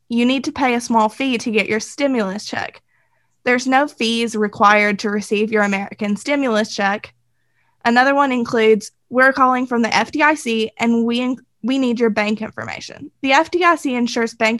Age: 20-39